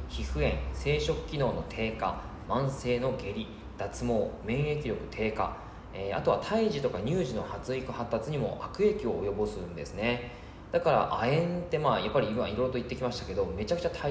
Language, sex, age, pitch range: Japanese, male, 20-39, 105-155 Hz